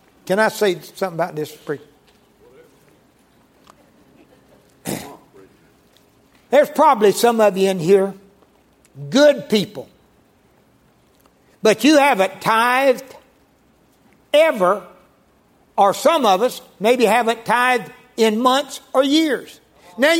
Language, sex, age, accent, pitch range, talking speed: English, male, 60-79, American, 190-270 Hz, 95 wpm